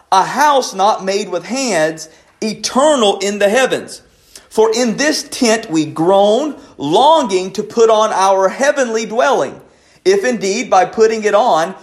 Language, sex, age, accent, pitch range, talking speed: English, male, 40-59, American, 185-270 Hz, 145 wpm